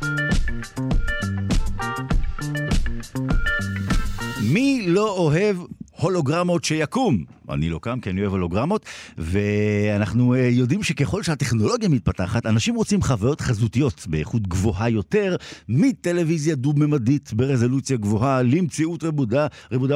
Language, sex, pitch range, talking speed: Hebrew, male, 95-145 Hz, 95 wpm